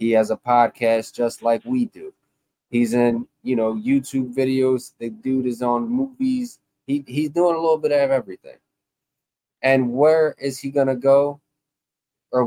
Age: 20-39